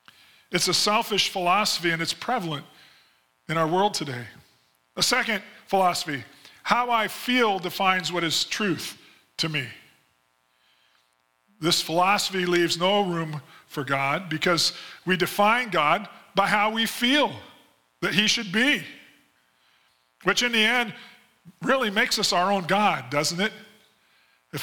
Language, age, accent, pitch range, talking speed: English, 40-59, American, 155-215 Hz, 135 wpm